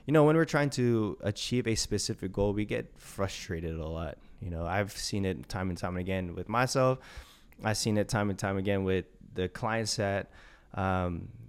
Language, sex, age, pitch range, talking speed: English, male, 20-39, 95-115 Hz, 200 wpm